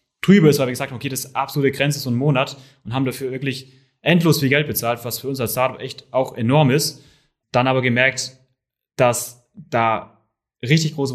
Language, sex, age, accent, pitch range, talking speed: German, male, 20-39, German, 120-145 Hz, 215 wpm